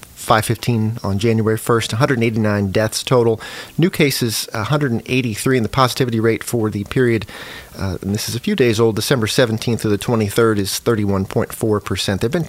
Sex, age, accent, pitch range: male, 40-59, American, 110-130 Hz